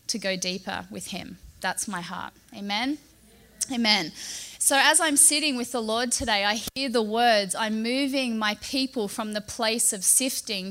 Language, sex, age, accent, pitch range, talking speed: English, female, 20-39, Australian, 220-270 Hz, 175 wpm